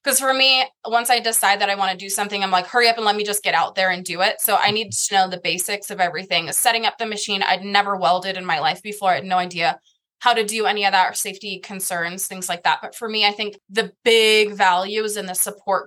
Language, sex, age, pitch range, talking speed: English, female, 20-39, 190-230 Hz, 275 wpm